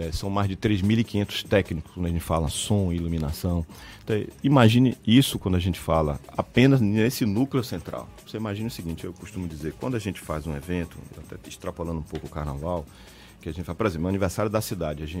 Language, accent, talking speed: Portuguese, Brazilian, 205 wpm